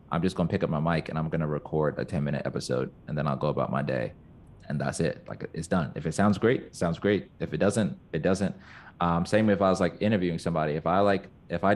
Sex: male